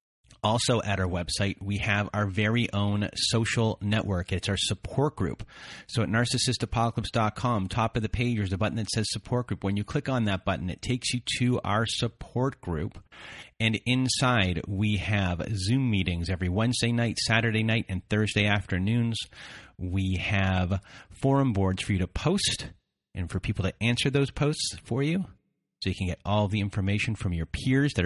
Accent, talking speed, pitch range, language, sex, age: American, 180 wpm, 100-120 Hz, English, male, 30-49